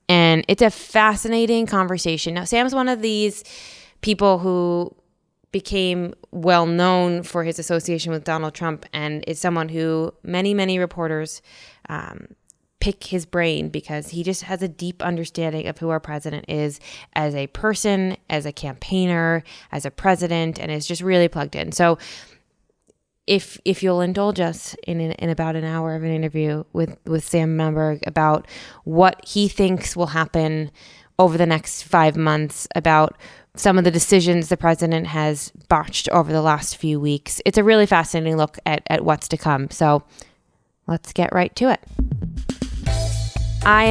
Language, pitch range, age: English, 155-185 Hz, 20-39